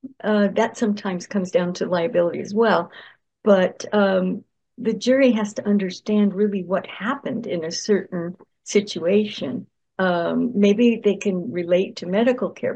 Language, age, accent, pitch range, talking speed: English, 60-79, American, 180-215 Hz, 145 wpm